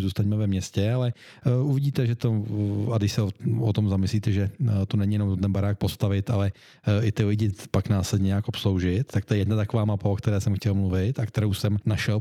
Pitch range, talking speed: 100-115 Hz, 210 wpm